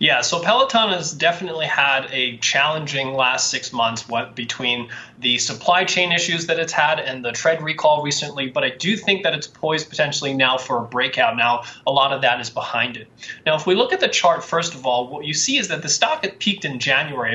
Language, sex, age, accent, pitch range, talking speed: English, male, 20-39, American, 140-180 Hz, 230 wpm